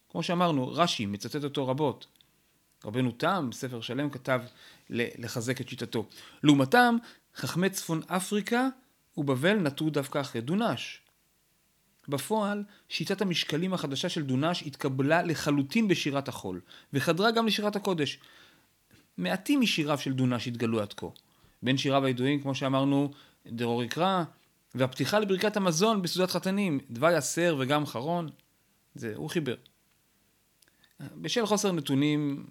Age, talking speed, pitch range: 40-59, 120 wpm, 125-170 Hz